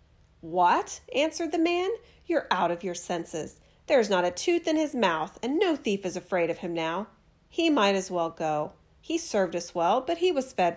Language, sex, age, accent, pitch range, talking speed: English, female, 40-59, American, 180-270 Hz, 205 wpm